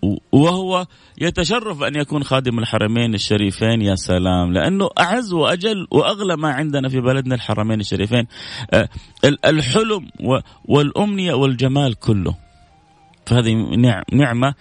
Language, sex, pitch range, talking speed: Arabic, male, 105-135 Hz, 105 wpm